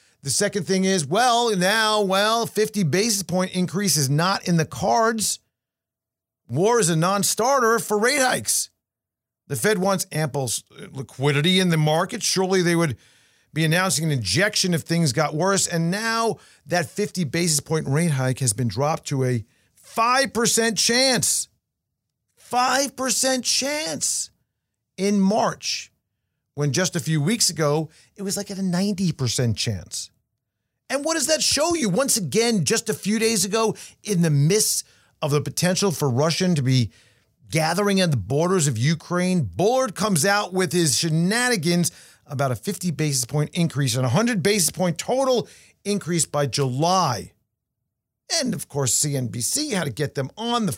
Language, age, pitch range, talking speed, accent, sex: English, 40-59, 145-205 Hz, 160 wpm, American, male